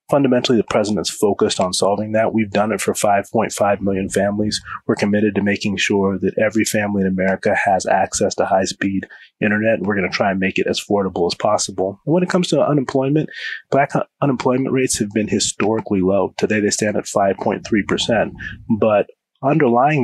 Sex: male